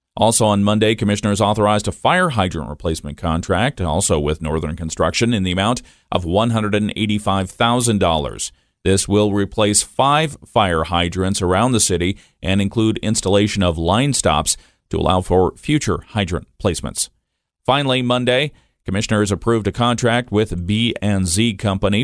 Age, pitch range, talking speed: 40-59, 95-120 Hz, 135 wpm